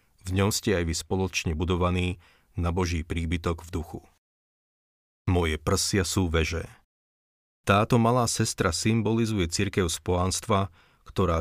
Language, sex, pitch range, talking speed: Slovak, male, 85-100 Hz, 120 wpm